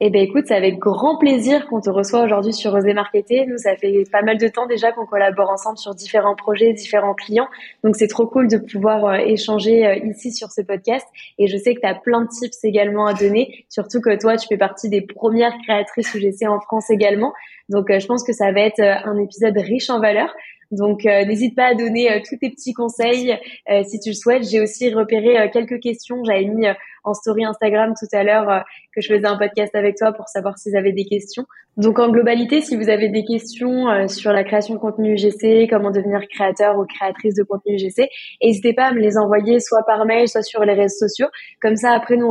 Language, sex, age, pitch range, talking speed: French, female, 20-39, 205-235 Hz, 230 wpm